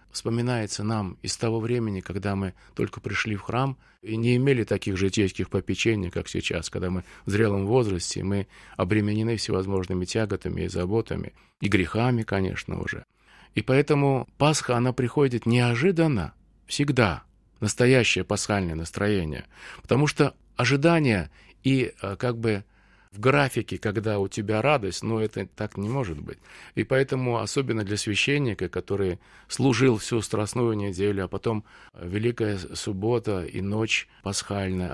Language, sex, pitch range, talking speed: Russian, male, 95-120 Hz, 135 wpm